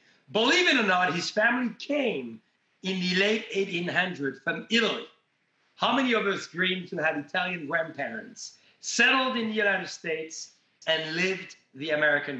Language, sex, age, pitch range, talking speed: English, male, 50-69, 160-220 Hz, 150 wpm